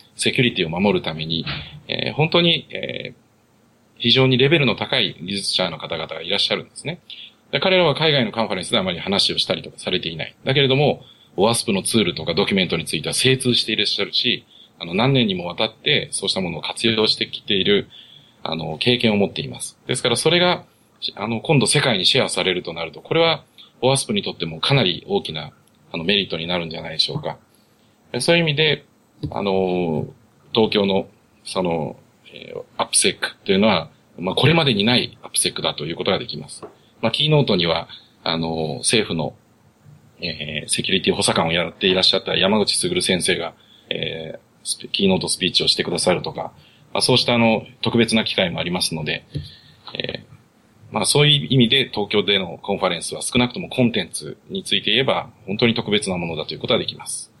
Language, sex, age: English, male, 40-59